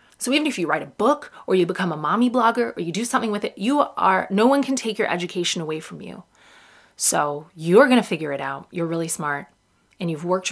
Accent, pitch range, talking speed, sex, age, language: American, 180-230 Hz, 245 wpm, female, 30-49, English